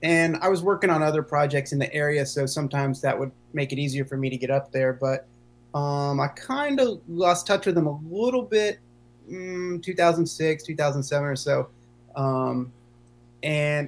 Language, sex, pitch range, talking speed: English, male, 120-160 Hz, 180 wpm